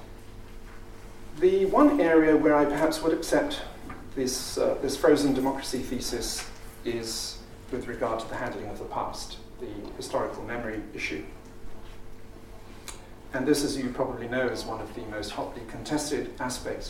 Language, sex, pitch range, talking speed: English, male, 115-145 Hz, 145 wpm